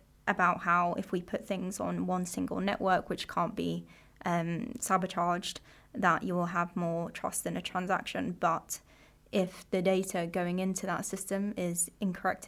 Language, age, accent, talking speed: English, 20-39, British, 165 wpm